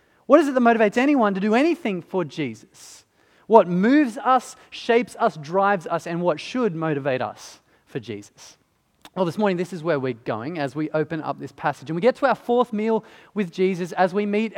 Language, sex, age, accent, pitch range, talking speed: English, male, 30-49, Australian, 160-215 Hz, 210 wpm